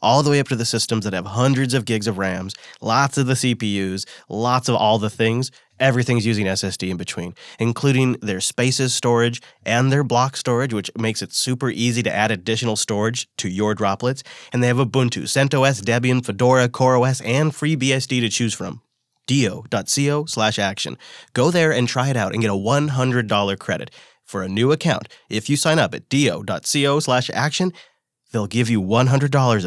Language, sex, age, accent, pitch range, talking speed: English, male, 30-49, American, 110-135 Hz, 185 wpm